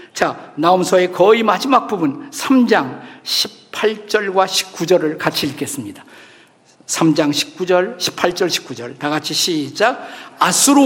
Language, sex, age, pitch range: Korean, male, 50-69, 180-235 Hz